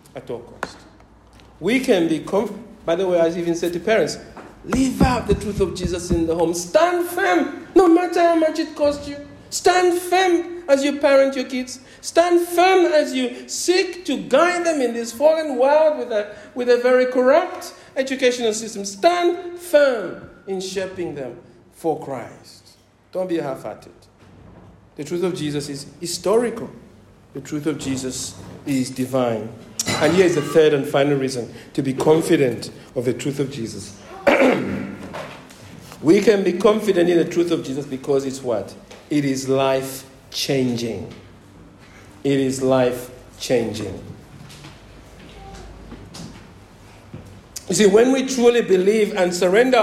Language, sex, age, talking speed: English, male, 60-79, 150 wpm